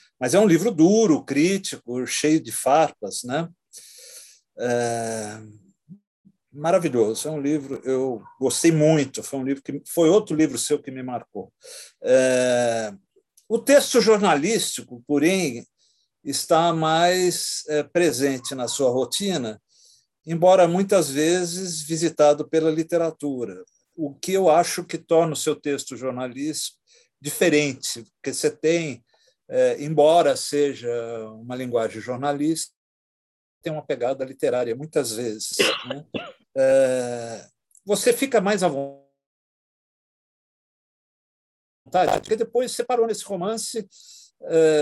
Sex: male